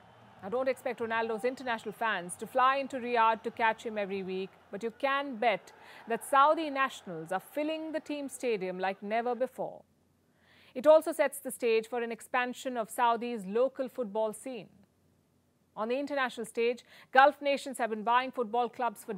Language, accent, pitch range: English, Indian, 225-265 Hz